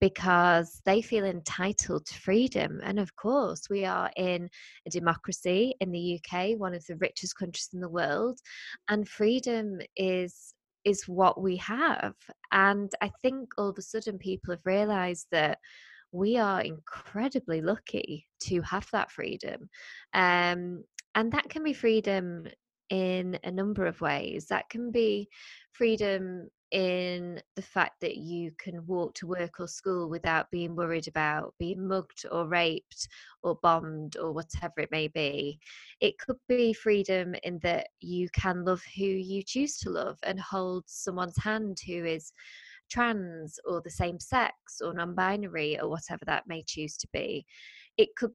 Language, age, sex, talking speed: English, 20-39, female, 160 wpm